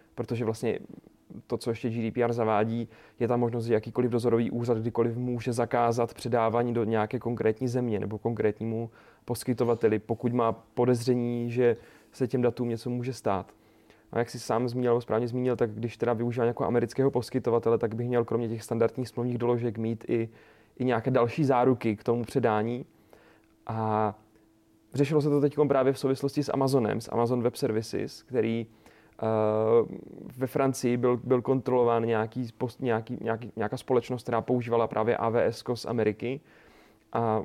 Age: 30-49